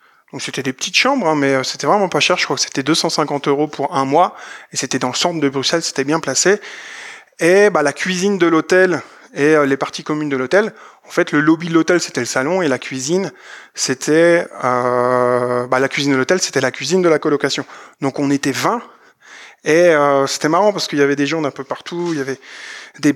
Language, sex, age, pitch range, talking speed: French, male, 20-39, 140-170 Hz, 230 wpm